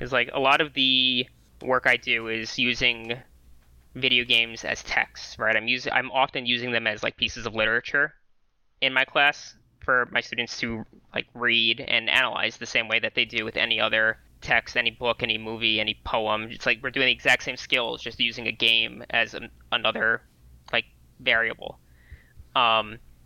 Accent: American